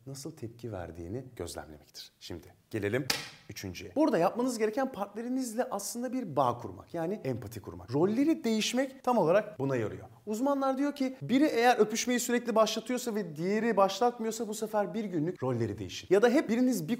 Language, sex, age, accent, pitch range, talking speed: Turkish, male, 40-59, native, 115-190 Hz, 160 wpm